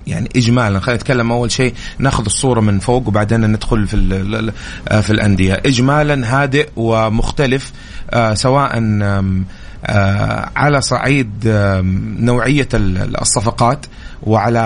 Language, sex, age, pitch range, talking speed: Arabic, male, 30-49, 105-130 Hz, 100 wpm